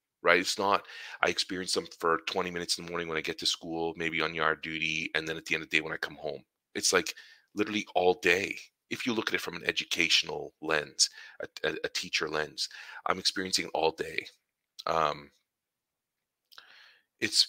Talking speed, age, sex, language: 200 wpm, 30-49, male, English